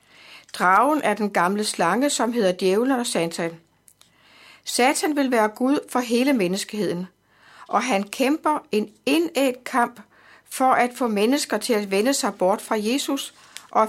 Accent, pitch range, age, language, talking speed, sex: native, 205-255 Hz, 60-79, Danish, 150 wpm, female